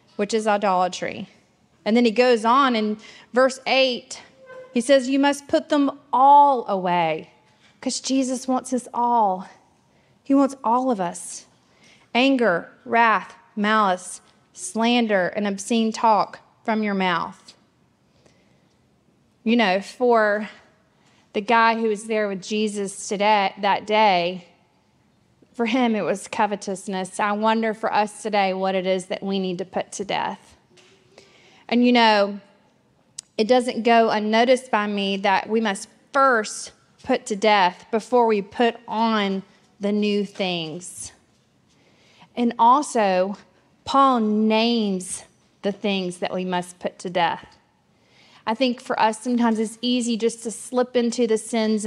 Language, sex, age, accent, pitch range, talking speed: English, female, 30-49, American, 200-240 Hz, 140 wpm